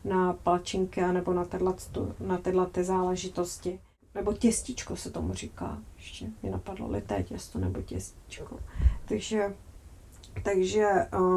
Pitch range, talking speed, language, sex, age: 185-215 Hz, 110 wpm, Czech, female, 30-49